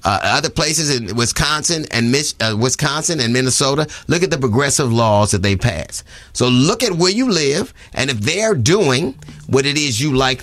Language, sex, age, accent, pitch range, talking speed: English, male, 30-49, American, 115-170 Hz, 190 wpm